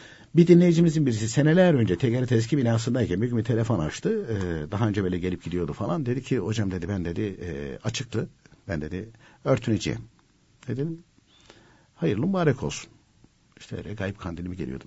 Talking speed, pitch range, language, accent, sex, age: 155 wpm, 90-140 Hz, Turkish, native, male, 60-79